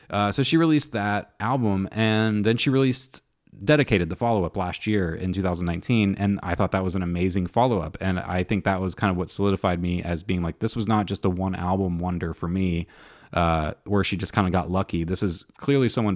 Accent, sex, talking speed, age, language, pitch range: American, male, 225 wpm, 30-49, English, 90-110 Hz